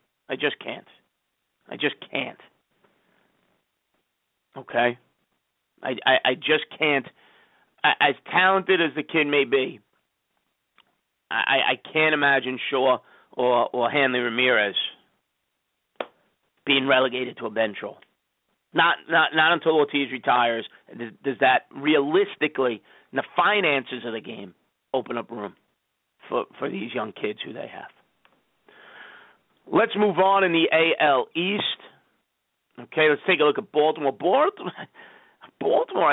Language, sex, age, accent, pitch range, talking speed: English, male, 40-59, American, 125-185 Hz, 125 wpm